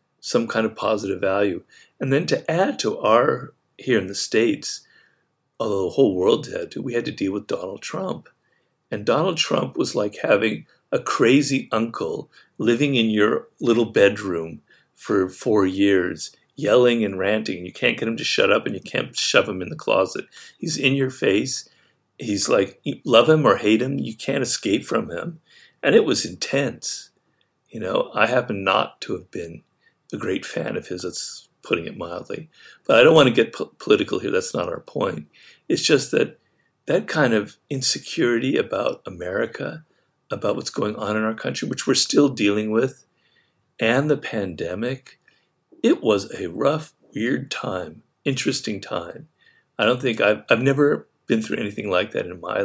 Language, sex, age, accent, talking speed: English, male, 50-69, American, 180 wpm